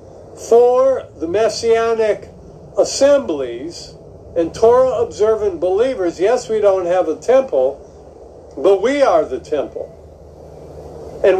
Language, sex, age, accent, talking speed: English, male, 50-69, American, 105 wpm